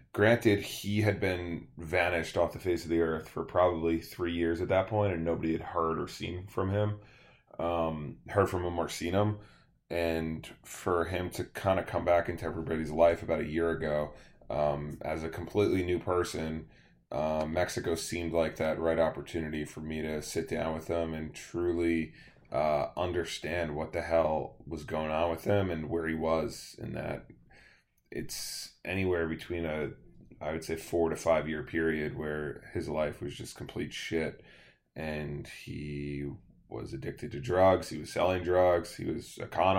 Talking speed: 180 wpm